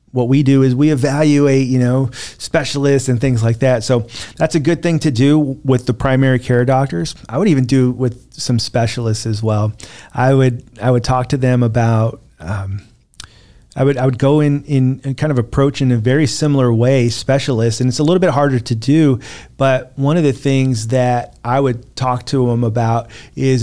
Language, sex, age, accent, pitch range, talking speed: English, male, 40-59, American, 115-135 Hz, 205 wpm